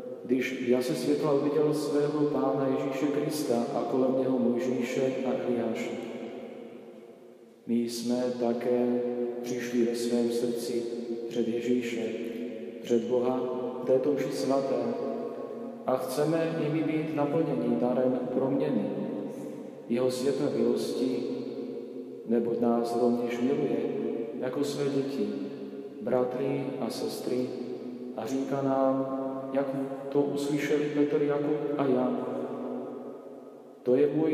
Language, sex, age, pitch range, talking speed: Slovak, male, 40-59, 120-145 Hz, 105 wpm